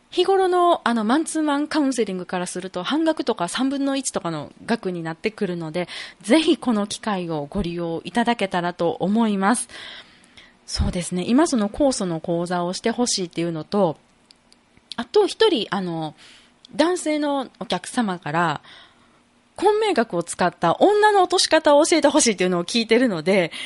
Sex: female